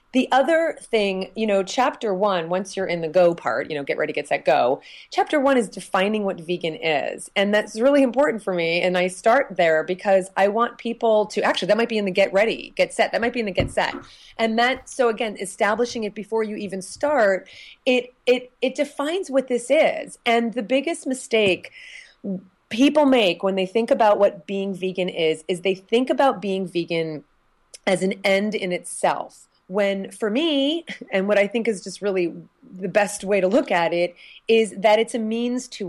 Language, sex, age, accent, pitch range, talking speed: English, female, 30-49, American, 180-235 Hz, 205 wpm